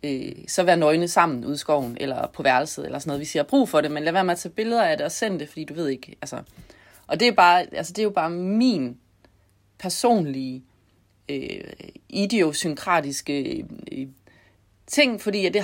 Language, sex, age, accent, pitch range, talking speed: Danish, female, 30-49, native, 140-190 Hz, 205 wpm